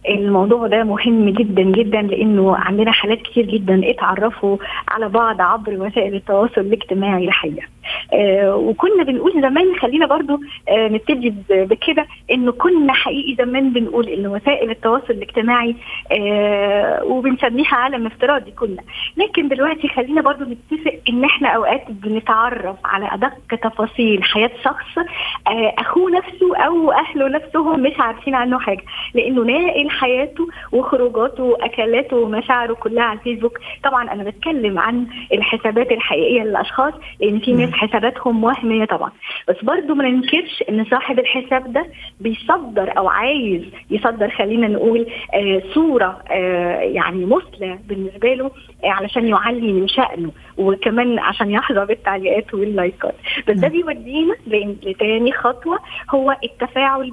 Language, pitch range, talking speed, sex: Arabic, 210-270 Hz, 130 wpm, female